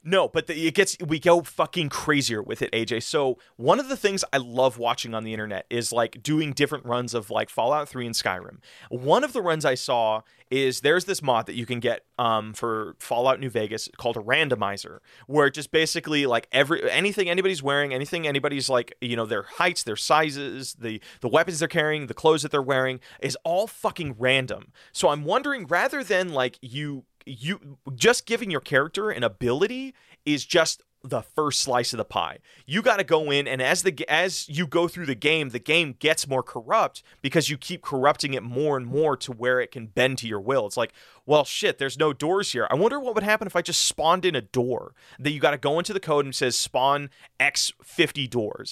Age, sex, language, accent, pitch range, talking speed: 30-49, male, English, American, 125-170 Hz, 220 wpm